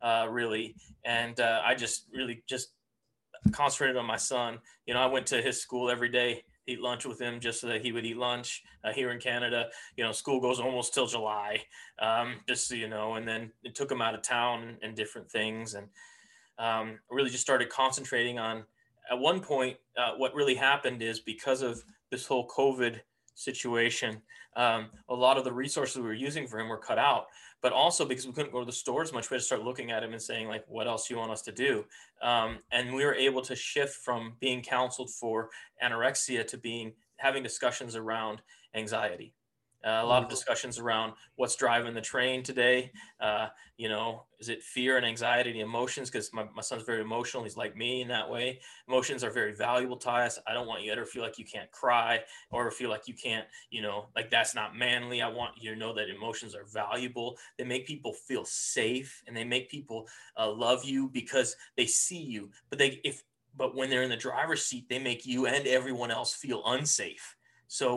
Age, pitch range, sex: 20-39, 115-130 Hz, male